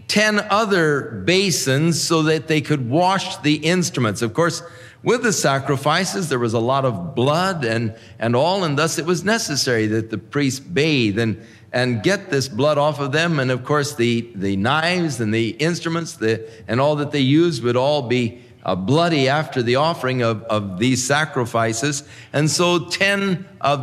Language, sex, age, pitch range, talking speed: English, male, 50-69, 120-165 Hz, 180 wpm